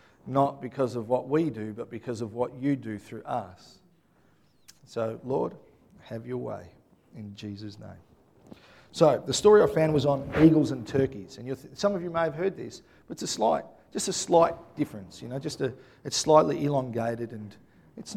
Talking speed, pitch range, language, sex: 190 wpm, 125-160 Hz, English, male